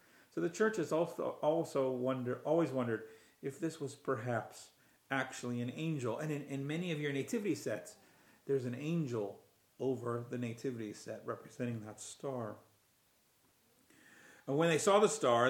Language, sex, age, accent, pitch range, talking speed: English, male, 40-59, American, 120-155 Hz, 155 wpm